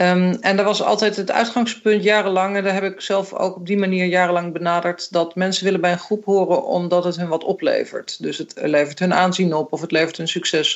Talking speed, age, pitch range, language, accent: 230 wpm, 40-59, 175-210 Hz, Dutch, Dutch